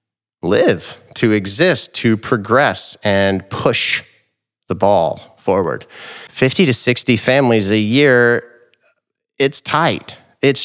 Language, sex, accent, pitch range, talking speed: English, male, American, 105-130 Hz, 105 wpm